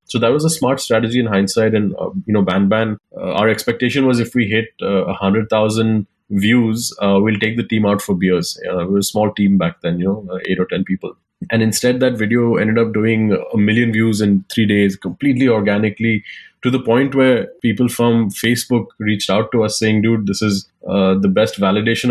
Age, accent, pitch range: 20-39, Indian, 100-120 Hz